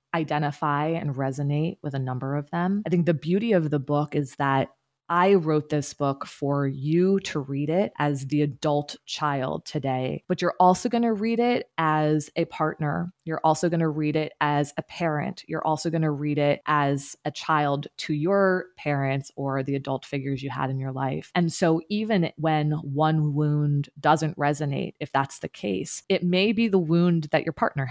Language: English